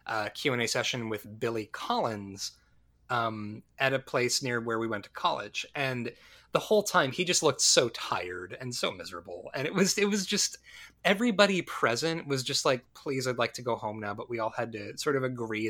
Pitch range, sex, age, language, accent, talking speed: 115-165 Hz, male, 20-39, English, American, 220 wpm